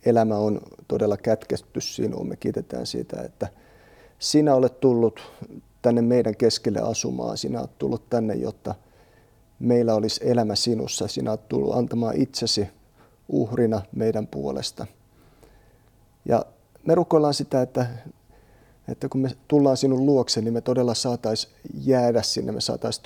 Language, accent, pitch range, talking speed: Finnish, native, 110-125 Hz, 135 wpm